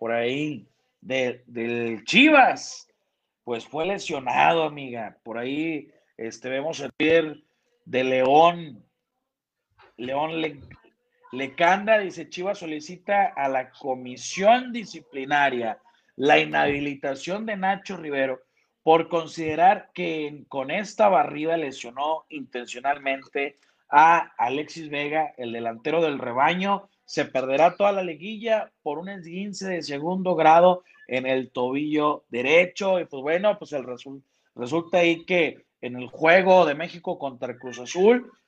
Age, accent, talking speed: 40-59, Mexican, 120 wpm